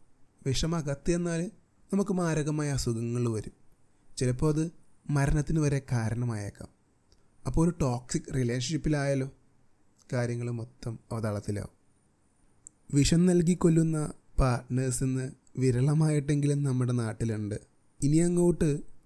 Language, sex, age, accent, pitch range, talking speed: Malayalam, male, 30-49, native, 120-155 Hz, 85 wpm